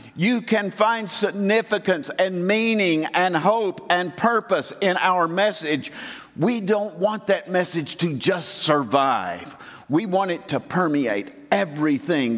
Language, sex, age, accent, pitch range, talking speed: English, male, 50-69, American, 140-190 Hz, 130 wpm